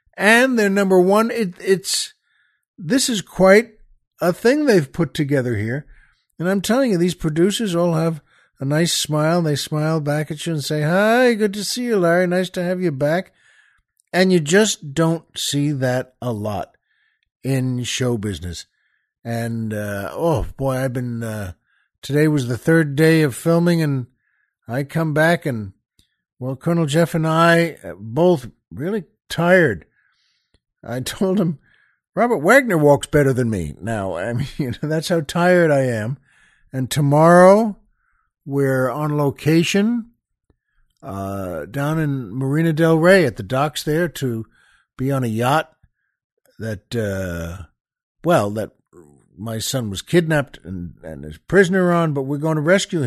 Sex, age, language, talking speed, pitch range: male, 60-79, English, 155 wpm, 125-180 Hz